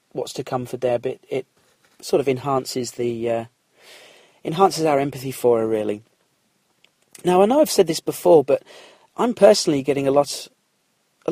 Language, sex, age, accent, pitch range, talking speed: English, male, 40-59, British, 135-185 Hz, 170 wpm